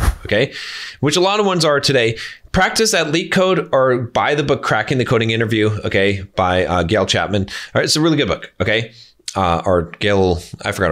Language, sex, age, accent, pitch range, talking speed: English, male, 30-49, American, 105-125 Hz, 210 wpm